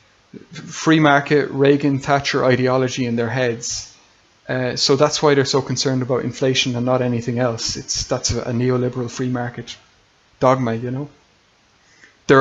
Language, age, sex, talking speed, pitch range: English, 30-49, male, 150 wpm, 120-140 Hz